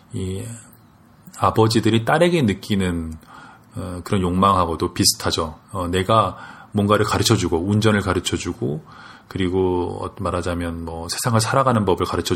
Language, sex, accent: Korean, male, native